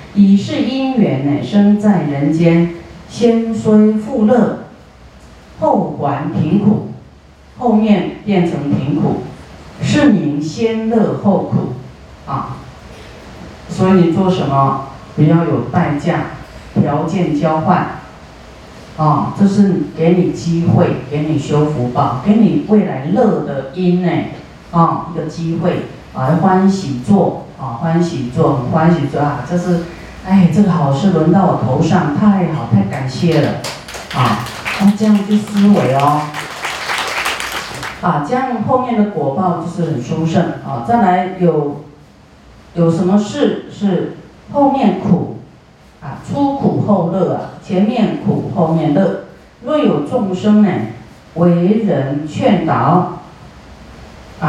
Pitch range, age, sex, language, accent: 155-205 Hz, 40-59, female, Chinese, native